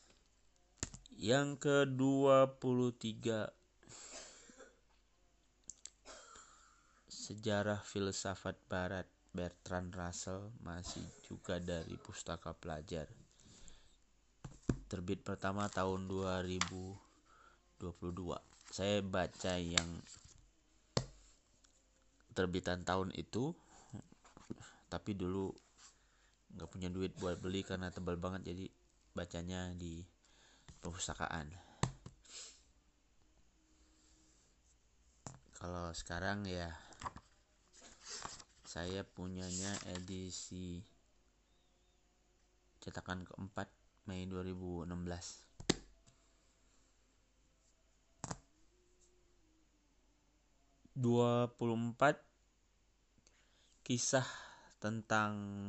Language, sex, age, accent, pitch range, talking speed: Indonesian, male, 30-49, native, 85-100 Hz, 55 wpm